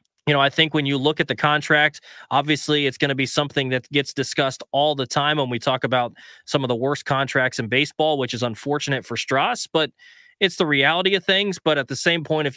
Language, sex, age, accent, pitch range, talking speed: English, male, 20-39, American, 130-155 Hz, 240 wpm